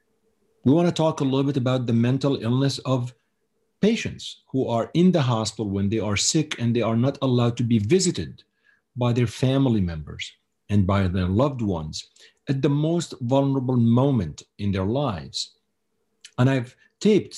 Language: English